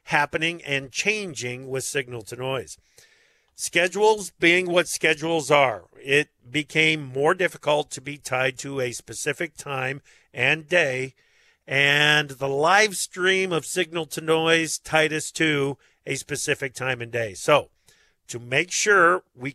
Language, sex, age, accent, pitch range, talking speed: English, male, 50-69, American, 130-165 Hz, 130 wpm